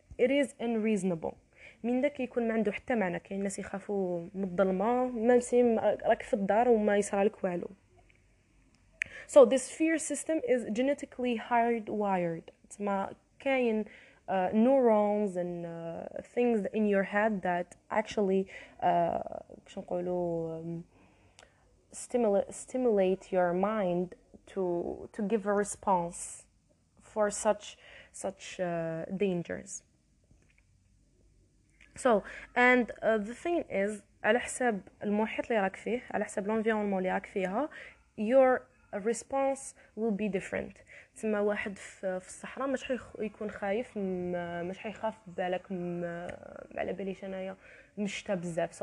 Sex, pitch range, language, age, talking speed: female, 185-245 Hz, Arabic, 20-39, 80 wpm